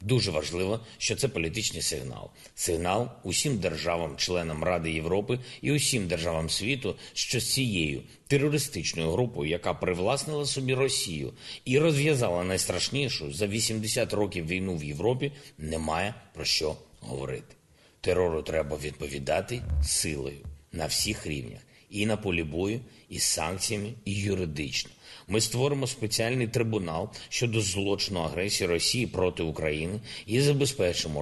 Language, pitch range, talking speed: Ukrainian, 85-120 Hz, 125 wpm